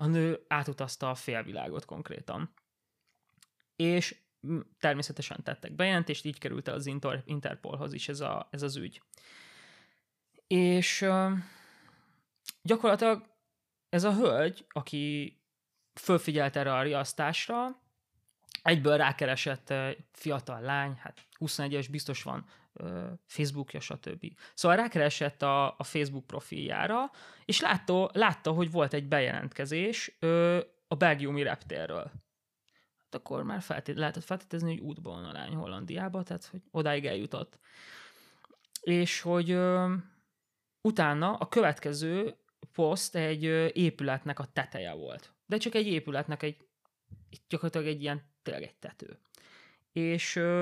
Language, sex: Hungarian, male